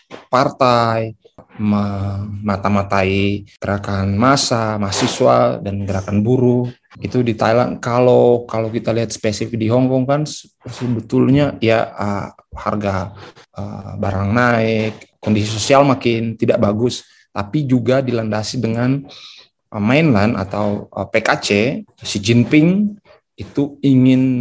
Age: 20-39